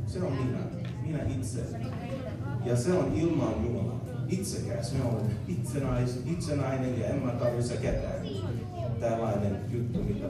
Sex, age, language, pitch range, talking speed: male, 30-49, Finnish, 110-125 Hz, 130 wpm